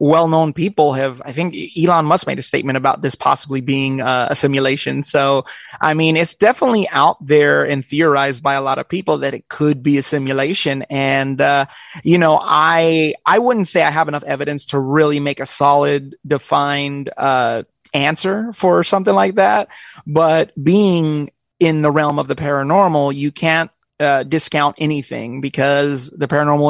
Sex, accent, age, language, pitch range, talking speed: male, American, 30-49, English, 140-165 Hz, 175 wpm